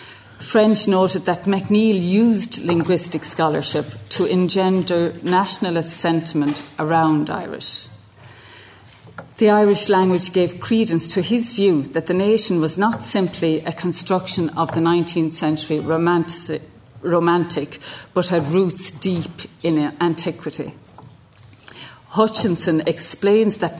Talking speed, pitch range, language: 110 wpm, 155-185 Hz, English